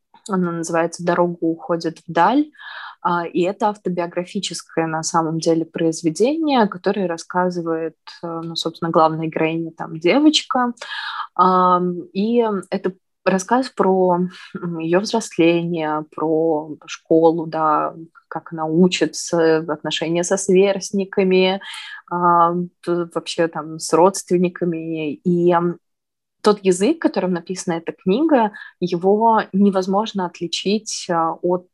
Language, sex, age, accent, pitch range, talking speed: Russian, female, 20-39, native, 165-195 Hz, 95 wpm